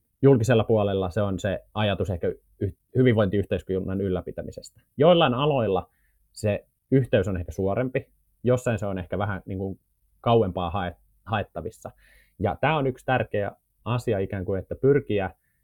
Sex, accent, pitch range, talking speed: male, native, 95-120 Hz, 135 wpm